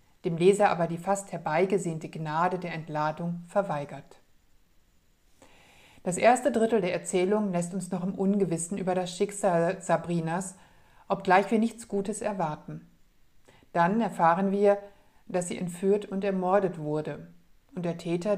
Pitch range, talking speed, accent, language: 175-200 Hz, 135 wpm, German, German